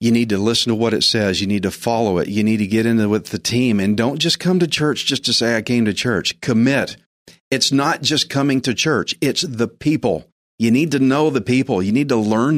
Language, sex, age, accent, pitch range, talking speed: English, male, 40-59, American, 110-140 Hz, 260 wpm